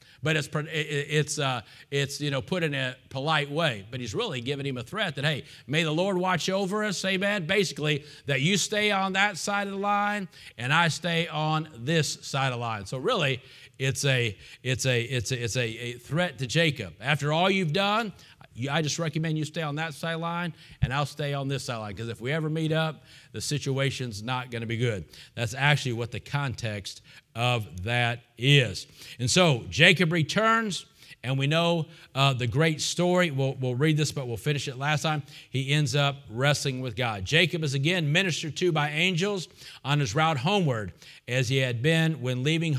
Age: 40-59